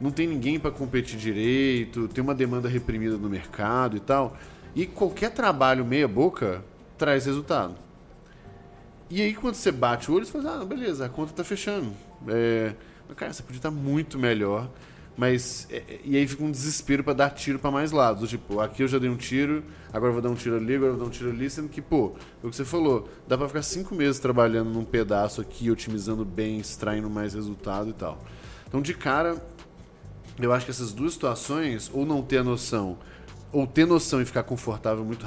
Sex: male